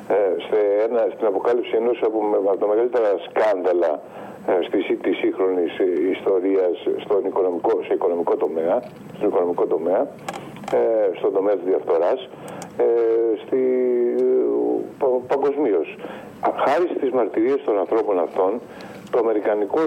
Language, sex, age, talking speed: Greek, male, 50-69, 105 wpm